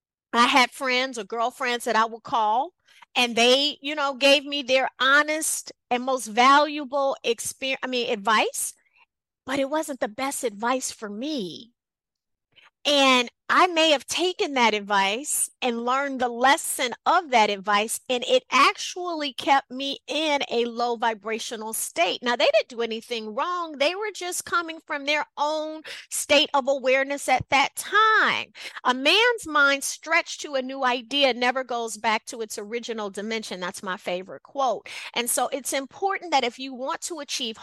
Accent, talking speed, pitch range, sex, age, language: American, 165 wpm, 235-300 Hz, female, 30-49, English